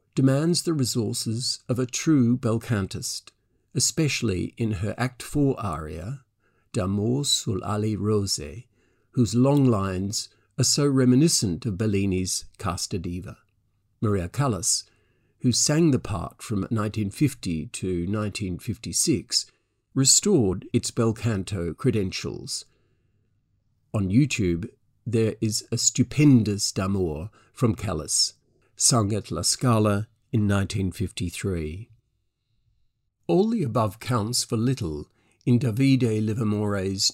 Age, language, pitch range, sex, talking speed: 50-69, English, 100-125 Hz, male, 105 wpm